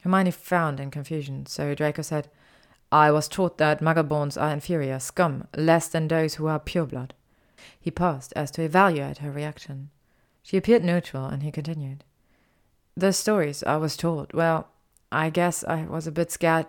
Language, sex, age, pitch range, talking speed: German, female, 30-49, 145-180 Hz, 175 wpm